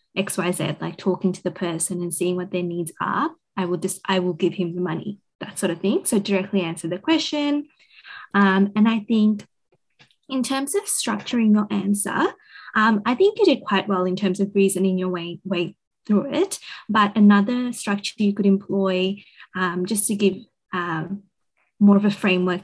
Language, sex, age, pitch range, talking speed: English, female, 20-39, 180-205 Hz, 190 wpm